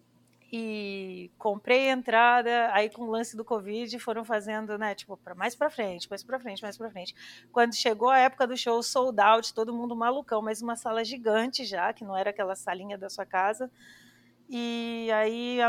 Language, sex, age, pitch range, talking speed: Portuguese, female, 30-49, 200-240 Hz, 190 wpm